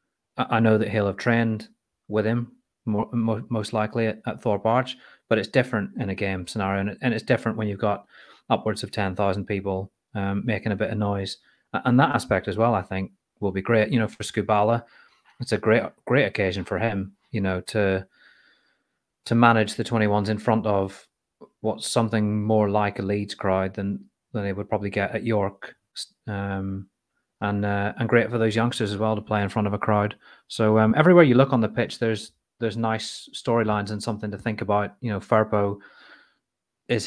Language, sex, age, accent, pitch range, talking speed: English, male, 30-49, British, 100-115 Hz, 200 wpm